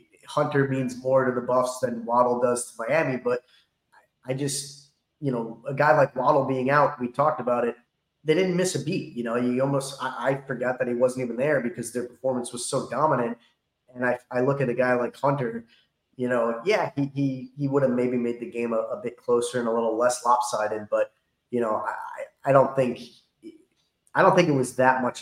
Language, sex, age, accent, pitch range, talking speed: English, male, 20-39, American, 115-135 Hz, 220 wpm